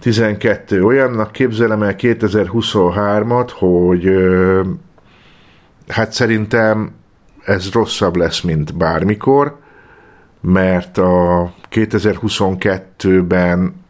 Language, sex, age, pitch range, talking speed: Hungarian, male, 50-69, 90-110 Hz, 70 wpm